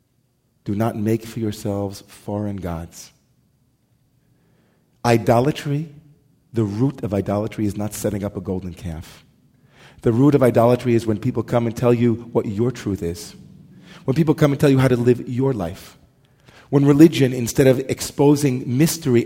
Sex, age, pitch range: male, 40-59, 110-135 Hz